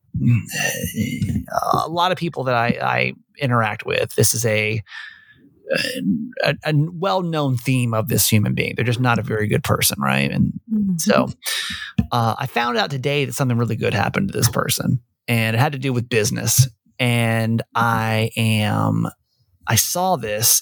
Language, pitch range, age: English, 110-140 Hz, 30-49